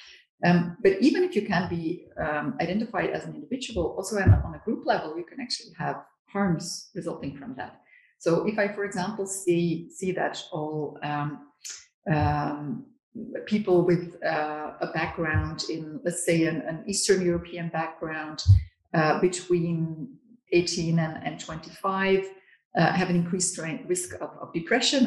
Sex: female